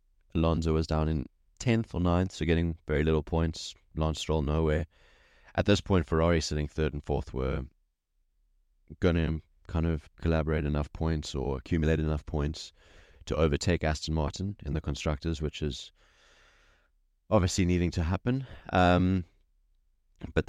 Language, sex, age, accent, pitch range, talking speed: English, male, 20-39, Australian, 75-85 Hz, 145 wpm